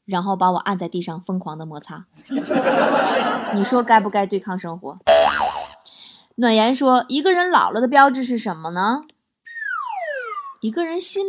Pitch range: 210-290 Hz